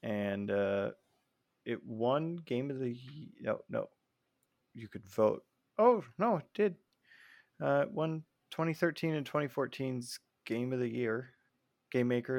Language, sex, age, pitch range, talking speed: English, male, 20-39, 110-135 Hz, 130 wpm